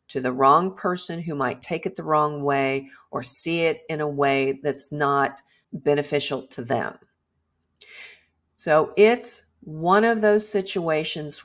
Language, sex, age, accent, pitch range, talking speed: English, female, 50-69, American, 145-185 Hz, 145 wpm